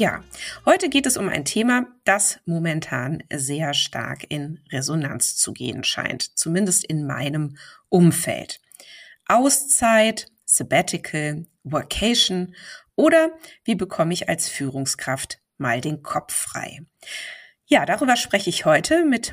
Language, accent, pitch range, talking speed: German, German, 145-215 Hz, 120 wpm